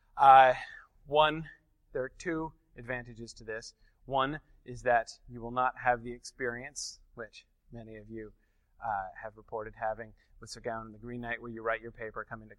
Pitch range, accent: 110-135 Hz, American